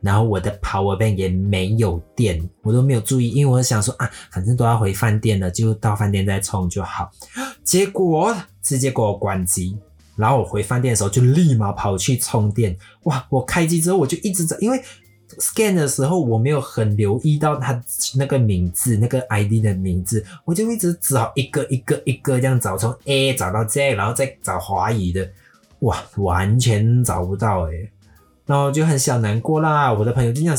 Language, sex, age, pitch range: Chinese, male, 20-39, 105-140 Hz